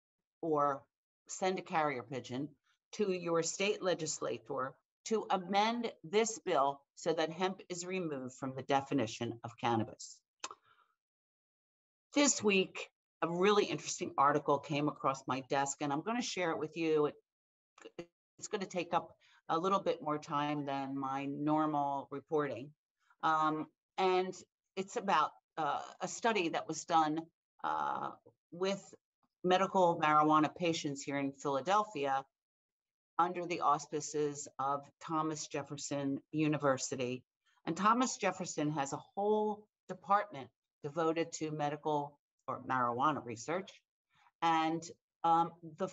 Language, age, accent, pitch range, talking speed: English, 50-69, American, 145-185 Hz, 125 wpm